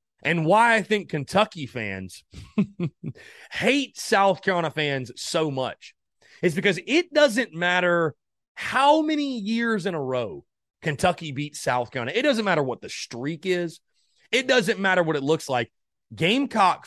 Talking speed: 150 wpm